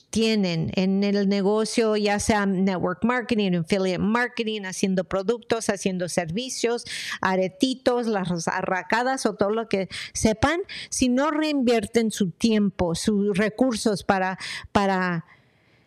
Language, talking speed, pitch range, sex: English, 115 wpm, 190-240 Hz, female